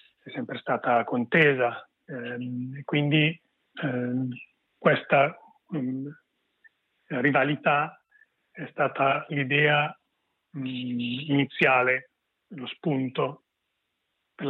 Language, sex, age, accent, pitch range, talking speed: Italian, male, 40-59, native, 125-155 Hz, 80 wpm